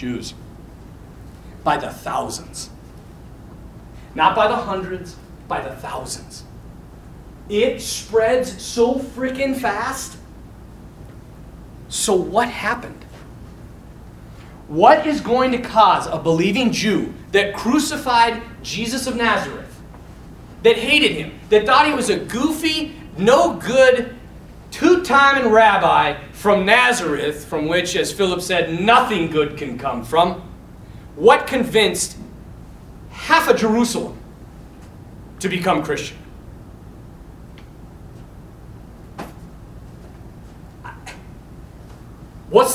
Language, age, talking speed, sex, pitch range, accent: English, 40-59, 95 wpm, male, 180-260 Hz, American